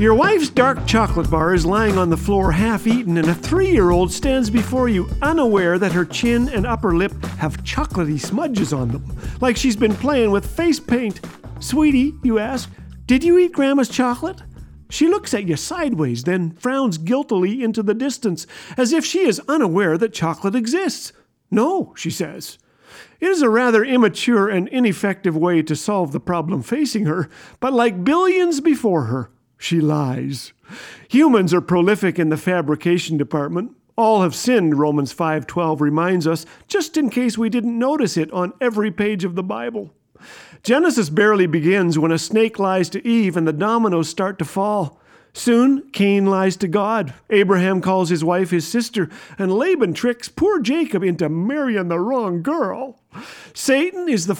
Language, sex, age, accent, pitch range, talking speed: English, male, 50-69, American, 175-245 Hz, 170 wpm